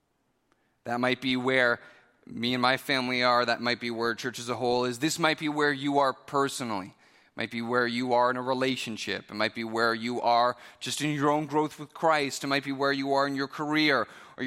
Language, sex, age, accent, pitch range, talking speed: English, male, 30-49, American, 120-160 Hz, 235 wpm